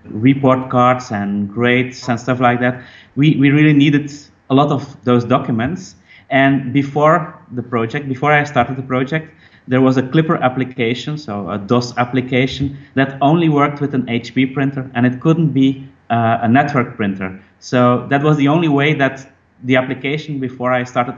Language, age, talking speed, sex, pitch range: English, 30-49, 175 wpm, male, 120-145 Hz